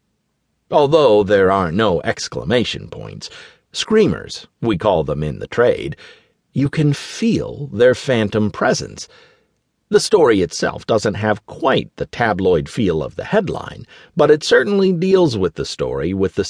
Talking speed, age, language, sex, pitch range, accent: 145 wpm, 50-69, English, male, 130-210 Hz, American